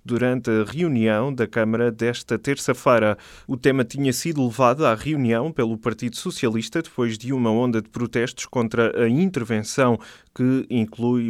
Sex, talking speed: male, 150 wpm